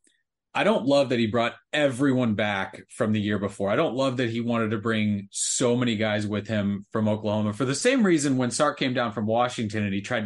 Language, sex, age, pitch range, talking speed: English, male, 30-49, 105-125 Hz, 235 wpm